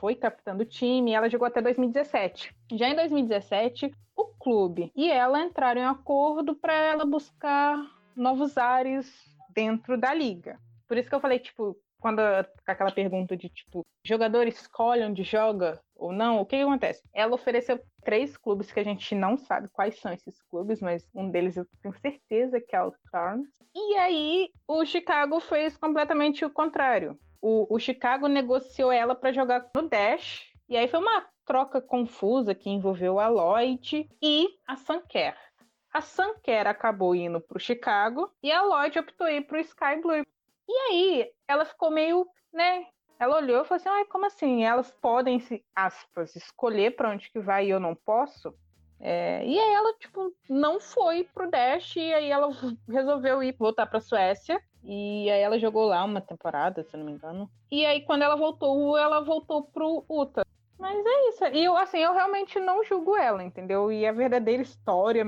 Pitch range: 215-310 Hz